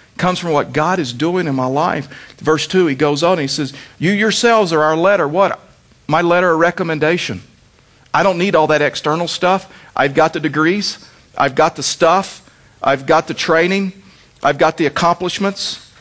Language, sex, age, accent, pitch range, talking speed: English, male, 50-69, American, 140-195 Hz, 185 wpm